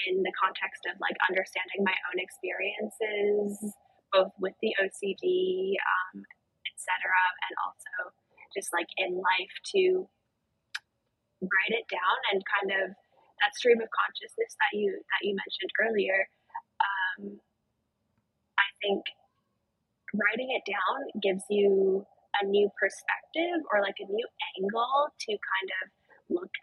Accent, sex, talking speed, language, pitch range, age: American, female, 130 wpm, English, 195-280 Hz, 20-39